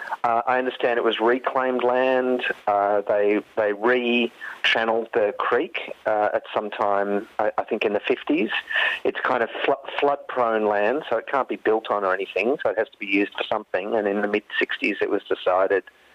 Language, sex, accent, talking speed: English, male, Australian, 195 wpm